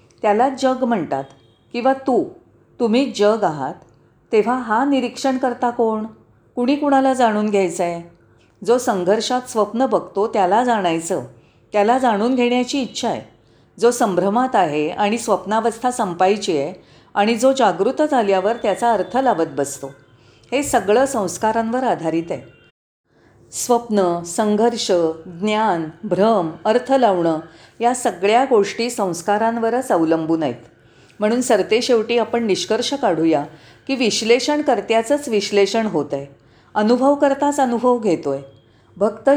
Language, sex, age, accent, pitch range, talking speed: Marathi, female, 40-59, native, 180-245 Hz, 120 wpm